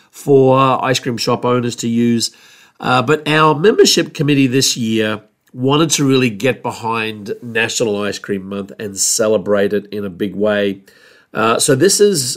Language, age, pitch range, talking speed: English, 40-59, 110-145 Hz, 165 wpm